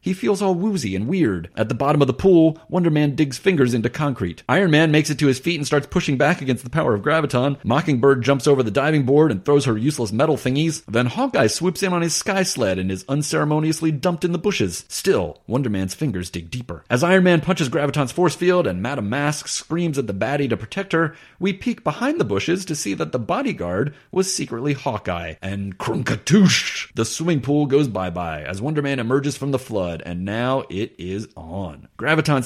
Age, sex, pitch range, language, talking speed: 30-49, male, 110-160 Hz, English, 215 wpm